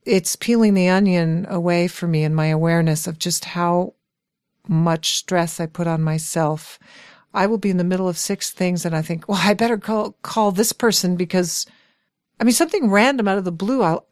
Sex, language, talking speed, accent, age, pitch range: female, English, 205 wpm, American, 50-69, 165-210 Hz